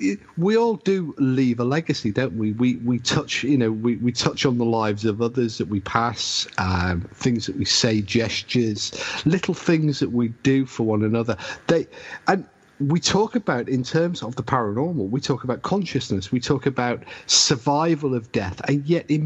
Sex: male